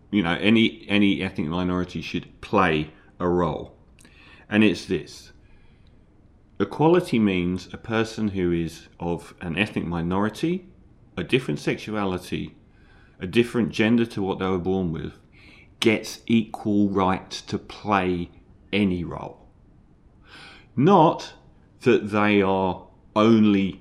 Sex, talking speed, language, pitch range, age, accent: male, 120 wpm, English, 95-125 Hz, 40-59, British